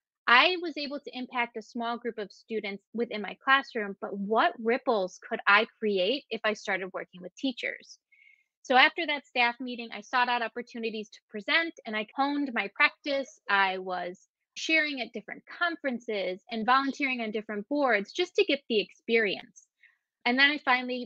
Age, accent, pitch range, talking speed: 20-39, American, 205-265 Hz, 175 wpm